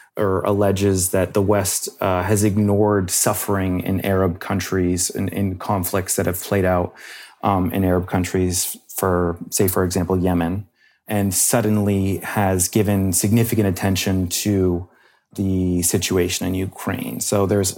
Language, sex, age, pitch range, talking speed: English, male, 30-49, 90-100 Hz, 140 wpm